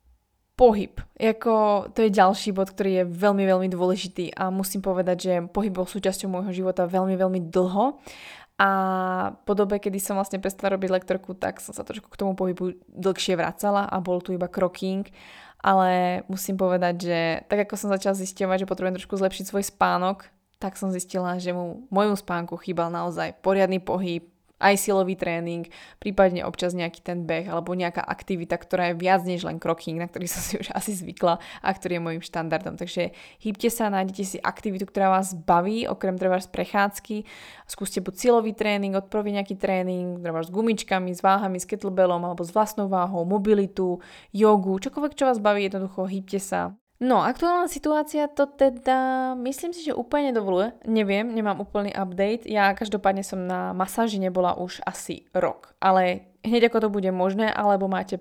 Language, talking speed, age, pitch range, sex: Slovak, 175 wpm, 20-39, 180-205 Hz, female